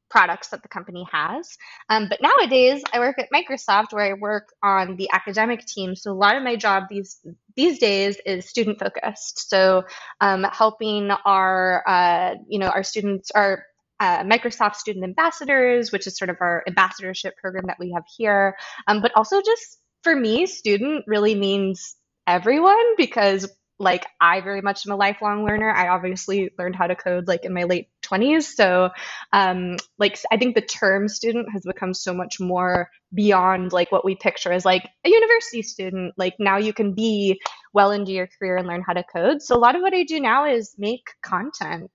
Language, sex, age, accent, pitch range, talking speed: English, female, 20-39, American, 185-230 Hz, 190 wpm